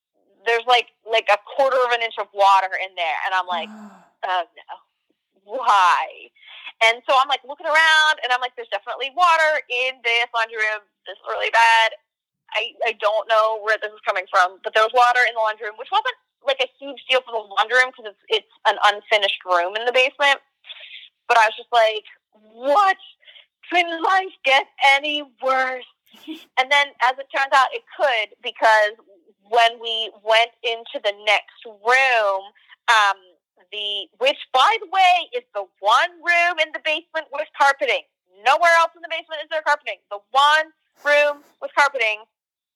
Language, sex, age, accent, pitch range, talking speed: English, female, 20-39, American, 210-280 Hz, 180 wpm